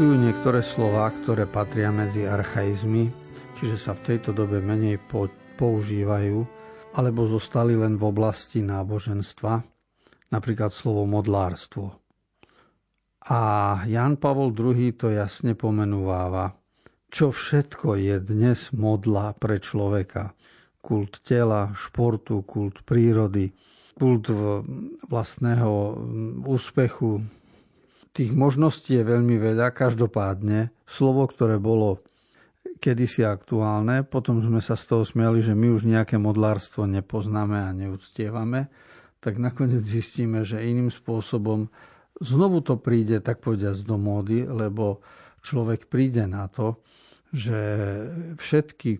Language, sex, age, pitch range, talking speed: Slovak, male, 50-69, 105-125 Hz, 110 wpm